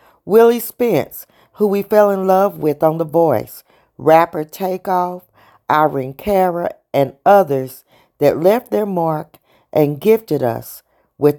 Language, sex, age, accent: English, female, 40-59, American